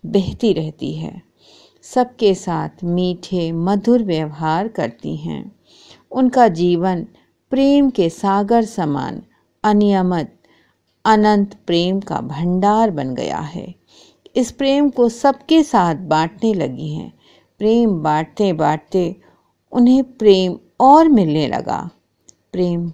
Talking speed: 105 wpm